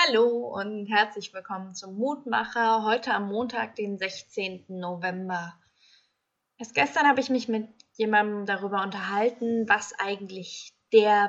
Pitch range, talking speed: 200-245 Hz, 130 wpm